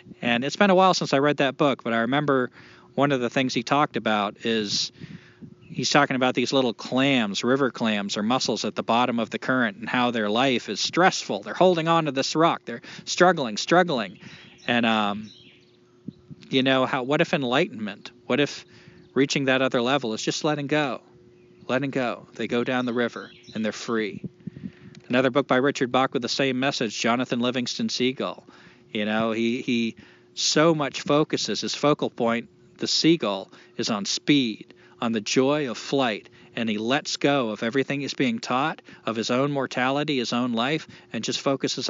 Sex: male